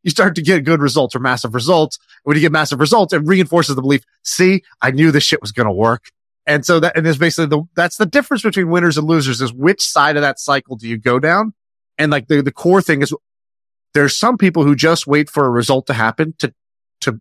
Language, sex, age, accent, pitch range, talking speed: English, male, 30-49, American, 120-155 Hz, 250 wpm